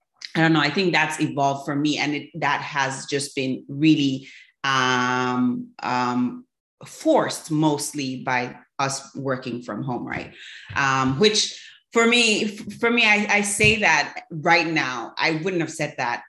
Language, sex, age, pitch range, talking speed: English, female, 30-49, 135-165 Hz, 160 wpm